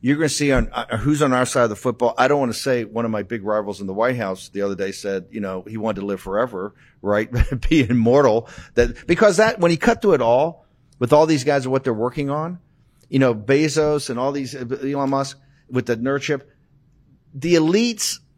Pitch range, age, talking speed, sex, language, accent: 120-150 Hz, 50-69, 235 wpm, male, English, American